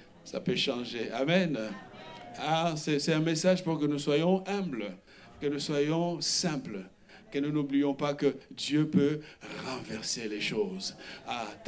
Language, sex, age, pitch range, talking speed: French, male, 60-79, 155-210 Hz, 150 wpm